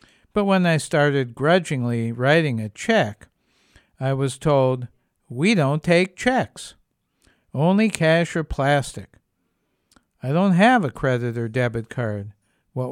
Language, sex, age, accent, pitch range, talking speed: English, male, 60-79, American, 130-185 Hz, 130 wpm